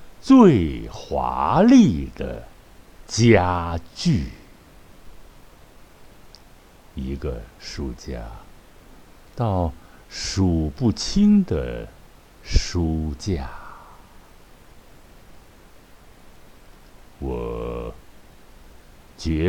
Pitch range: 70-105 Hz